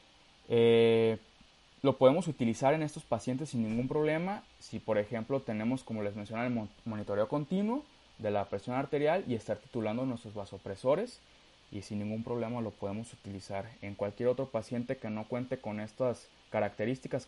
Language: Spanish